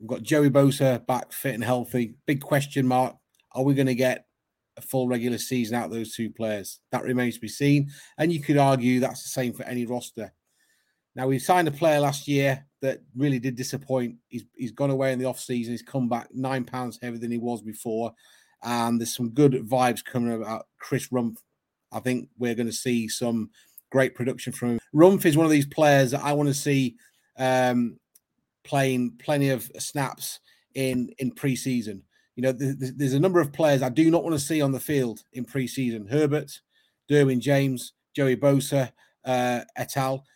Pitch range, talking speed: 120-140 Hz, 195 wpm